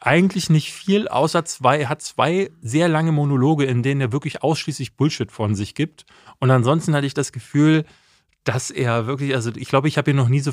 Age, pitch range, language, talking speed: 30-49, 115-145 Hz, German, 215 wpm